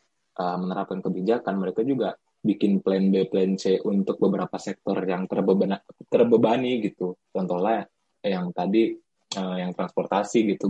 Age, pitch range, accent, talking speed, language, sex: 20-39, 95-115 Hz, native, 120 wpm, Indonesian, male